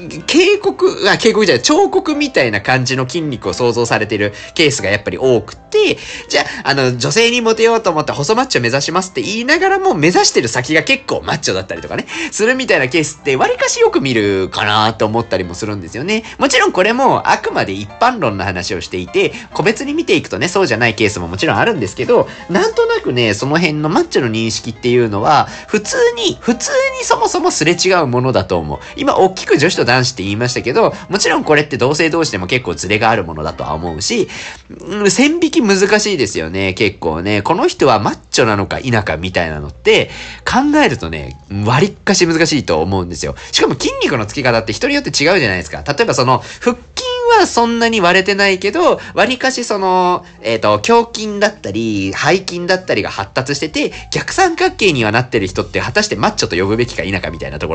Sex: male